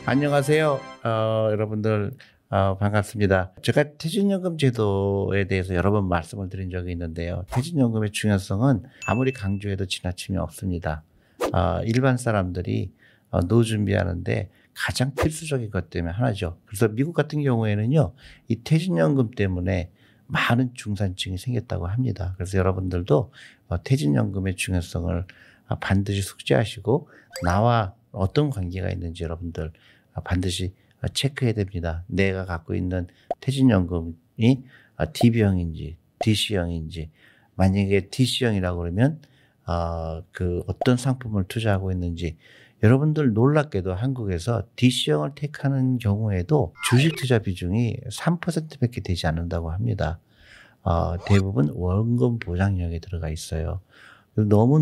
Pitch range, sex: 90-125 Hz, male